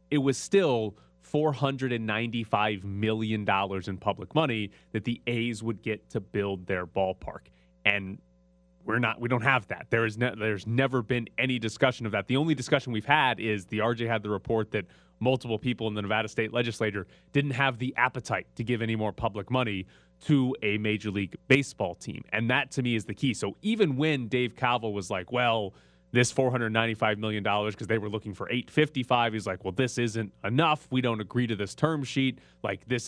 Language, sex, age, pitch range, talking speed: English, male, 30-49, 105-130 Hz, 195 wpm